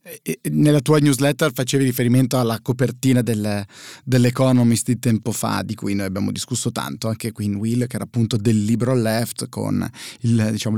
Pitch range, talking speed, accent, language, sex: 110-130 Hz, 175 wpm, native, Italian, male